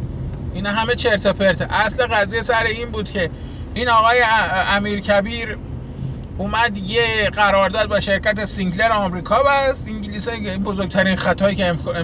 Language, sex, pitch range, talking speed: Persian, male, 190-260 Hz, 135 wpm